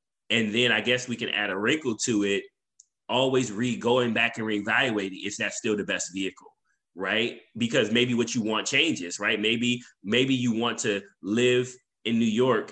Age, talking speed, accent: 30-49, 190 wpm, American